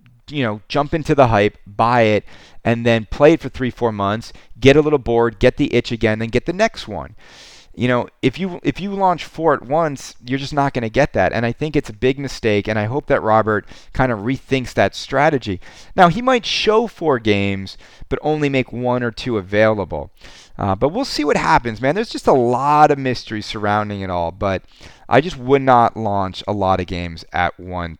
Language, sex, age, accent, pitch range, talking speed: English, male, 30-49, American, 105-140 Hz, 225 wpm